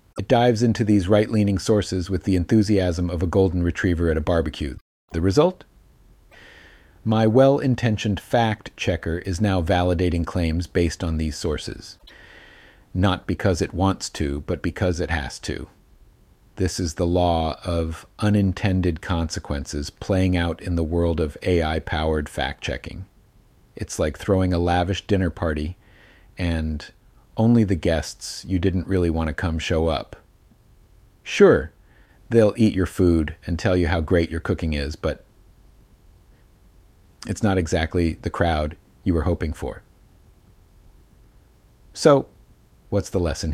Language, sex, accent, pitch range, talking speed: English, male, American, 85-100 Hz, 140 wpm